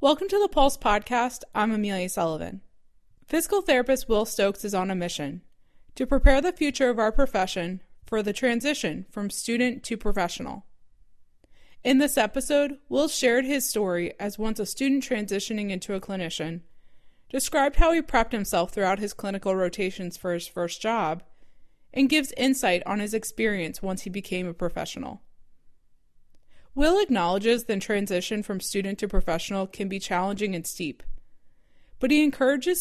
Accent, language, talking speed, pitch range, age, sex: American, English, 155 wpm, 185-255 Hz, 20-39, female